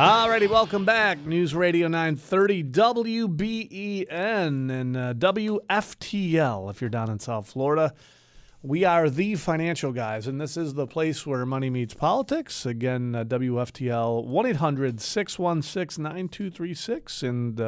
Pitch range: 120-165 Hz